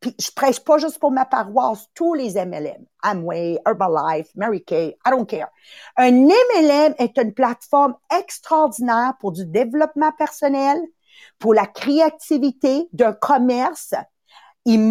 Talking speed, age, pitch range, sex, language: 135 wpm, 50-69, 235-330 Hz, female, English